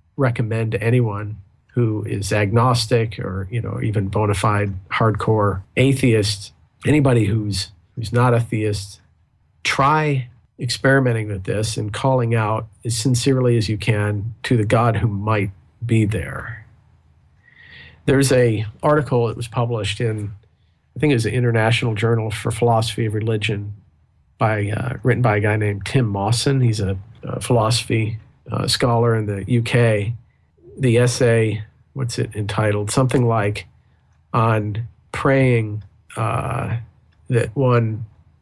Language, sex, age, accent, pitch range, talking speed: English, male, 50-69, American, 105-120 Hz, 135 wpm